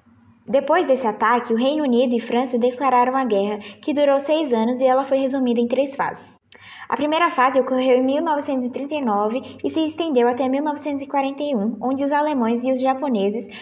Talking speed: 170 wpm